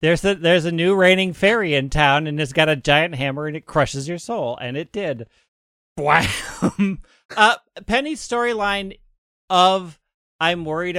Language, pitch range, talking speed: English, 130-155 Hz, 165 wpm